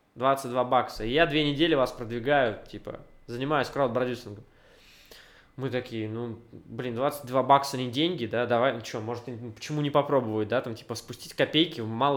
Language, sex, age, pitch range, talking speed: Russian, male, 20-39, 125-170 Hz, 165 wpm